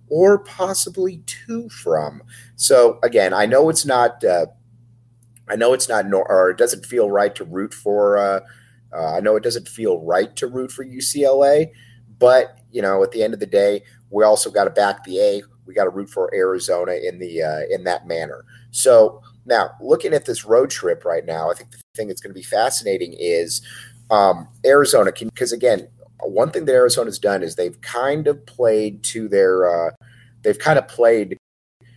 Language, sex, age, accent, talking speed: English, male, 30-49, American, 195 wpm